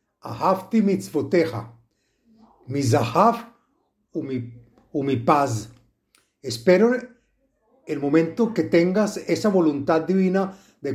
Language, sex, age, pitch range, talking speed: Spanish, male, 50-69, 135-195 Hz, 70 wpm